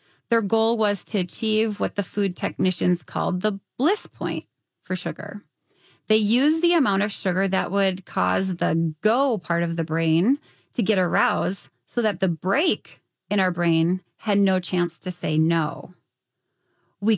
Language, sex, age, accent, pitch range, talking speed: English, female, 30-49, American, 180-230 Hz, 165 wpm